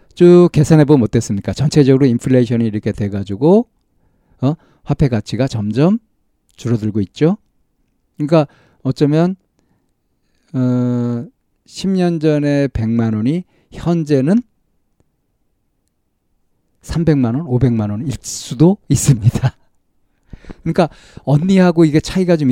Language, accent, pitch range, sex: Korean, native, 115-160 Hz, male